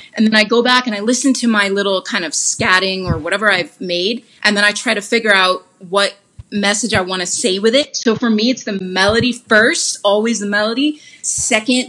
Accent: American